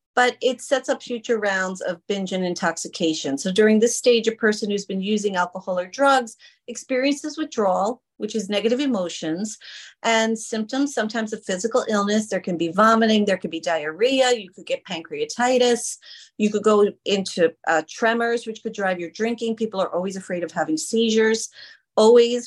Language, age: English, 40-59